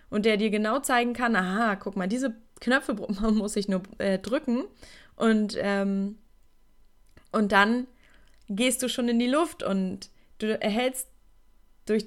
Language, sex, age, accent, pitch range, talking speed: German, female, 20-39, German, 195-225 Hz, 150 wpm